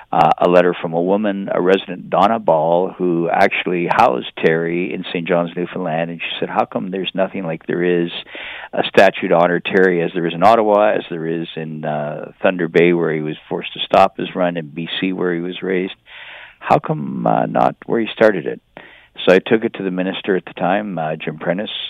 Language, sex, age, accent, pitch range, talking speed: English, male, 50-69, American, 85-95 Hz, 220 wpm